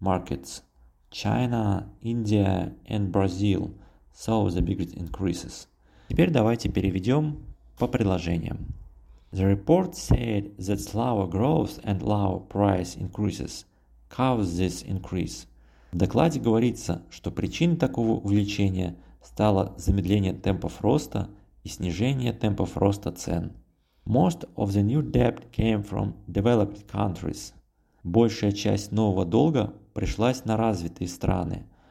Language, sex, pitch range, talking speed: Russian, male, 95-115 Hz, 115 wpm